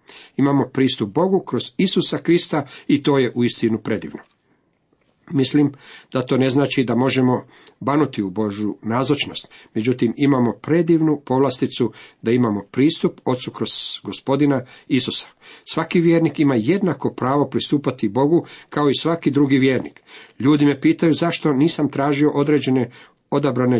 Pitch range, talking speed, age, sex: 120-150 Hz, 135 wpm, 50-69, male